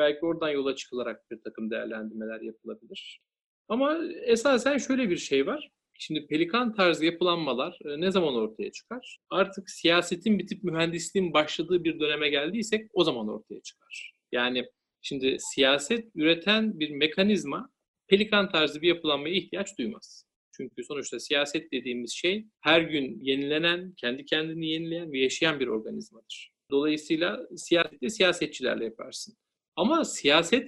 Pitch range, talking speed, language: 135-185 Hz, 130 wpm, Turkish